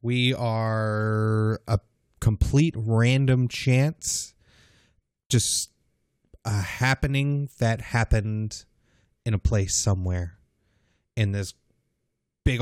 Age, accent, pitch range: 30-49, American, 105-120 Hz